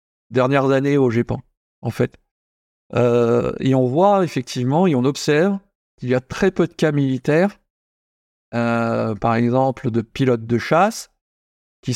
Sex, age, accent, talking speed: male, 50-69, French, 150 wpm